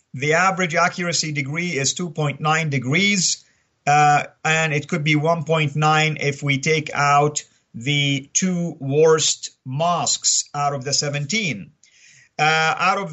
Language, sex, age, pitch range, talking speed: English, male, 50-69, 145-180 Hz, 130 wpm